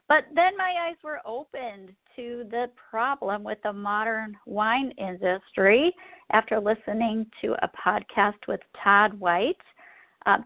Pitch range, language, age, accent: 205-275 Hz, English, 50-69, American